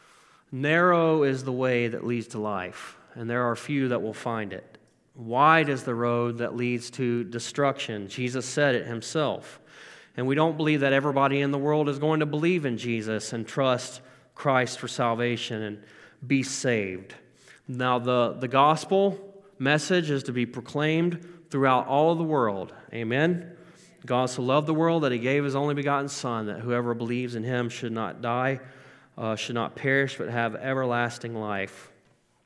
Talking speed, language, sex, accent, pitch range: 175 wpm, English, male, American, 120-145 Hz